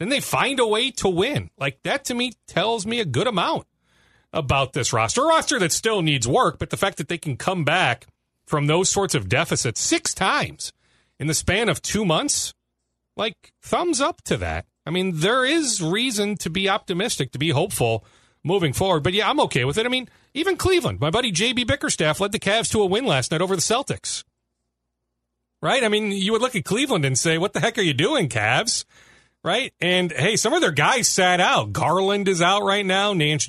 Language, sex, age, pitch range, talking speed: English, male, 40-59, 120-185 Hz, 215 wpm